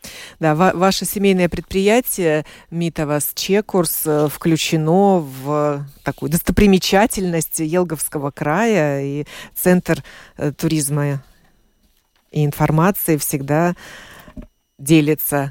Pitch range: 150-185 Hz